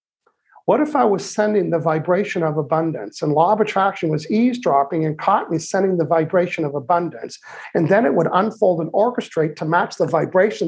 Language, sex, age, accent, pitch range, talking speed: English, male, 50-69, American, 160-200 Hz, 190 wpm